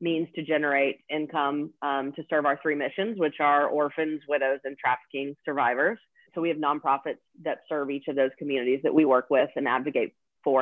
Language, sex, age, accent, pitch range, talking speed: English, female, 30-49, American, 140-160 Hz, 190 wpm